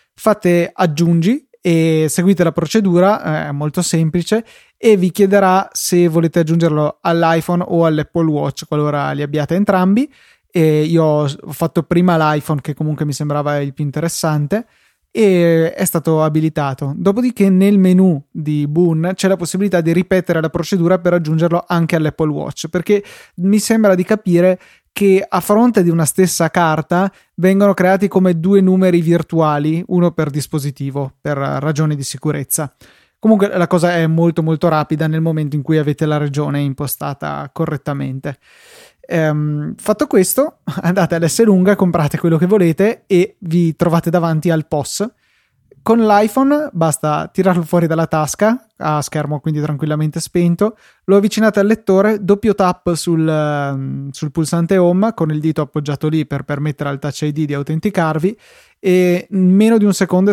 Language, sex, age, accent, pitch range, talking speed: Italian, male, 20-39, native, 155-190 Hz, 155 wpm